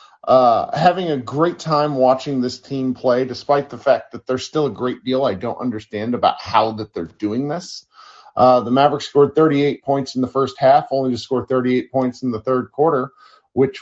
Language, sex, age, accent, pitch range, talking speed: English, male, 40-59, American, 125-150 Hz, 205 wpm